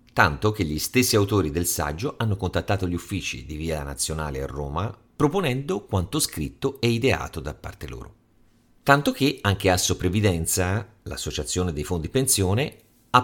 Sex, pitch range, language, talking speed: male, 80-120 Hz, Italian, 155 wpm